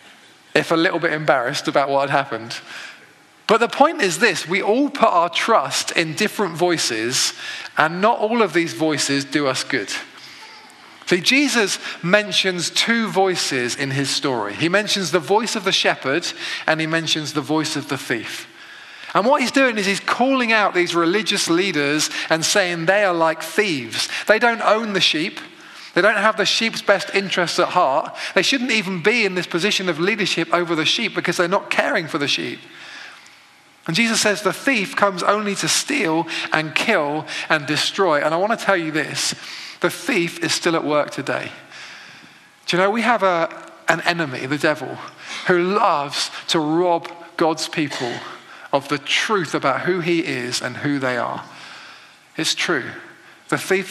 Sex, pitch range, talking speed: male, 155-205 Hz, 180 wpm